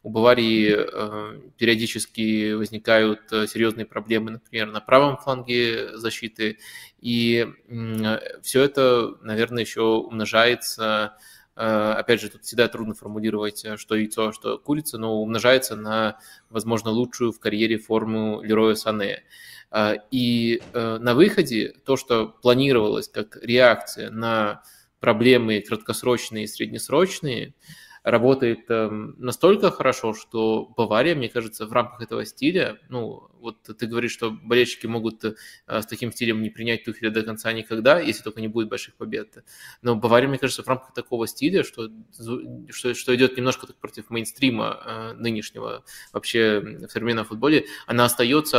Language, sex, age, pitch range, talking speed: Russian, male, 20-39, 110-120 Hz, 135 wpm